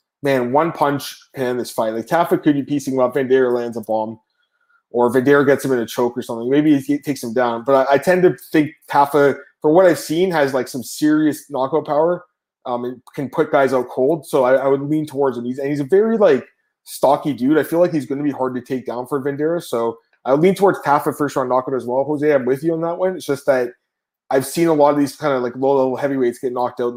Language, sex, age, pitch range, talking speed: English, male, 20-39, 125-150 Hz, 265 wpm